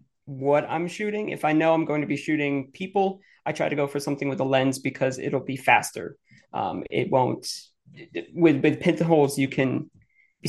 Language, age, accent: English, 20-39, American